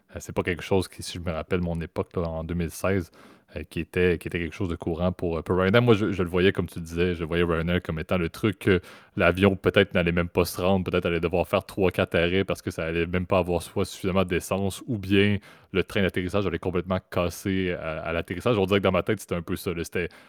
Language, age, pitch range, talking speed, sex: French, 30-49, 85-95 Hz, 265 wpm, male